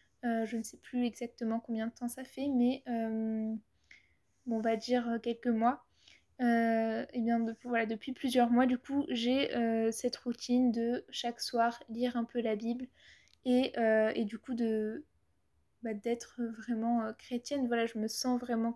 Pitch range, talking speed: 230-250 Hz, 180 wpm